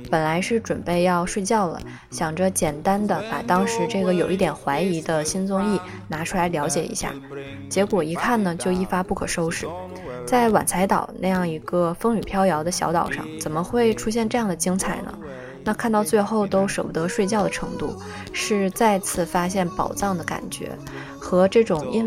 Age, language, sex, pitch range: 20-39, Chinese, female, 165-210 Hz